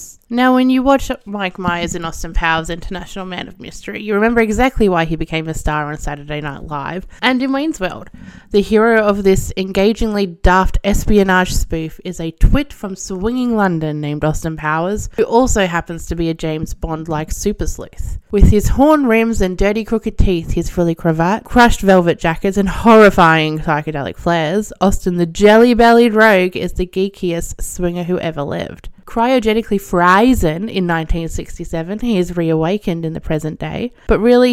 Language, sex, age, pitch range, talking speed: English, female, 20-39, 170-215 Hz, 170 wpm